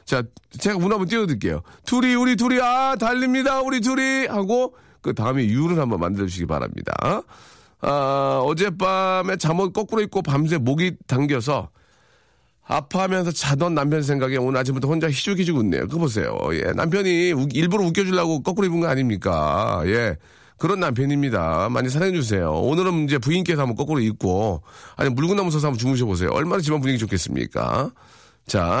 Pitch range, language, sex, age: 110-180 Hz, Korean, male, 40-59